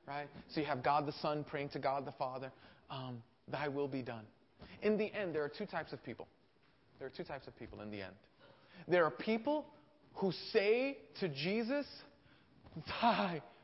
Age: 40-59